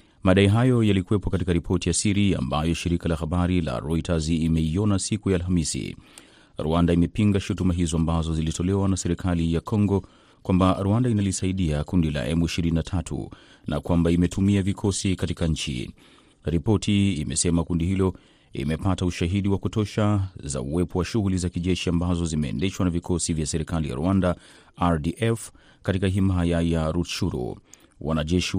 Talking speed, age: 140 wpm, 30-49